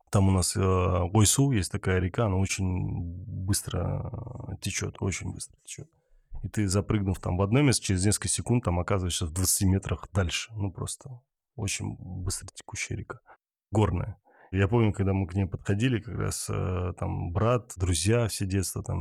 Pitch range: 95-115 Hz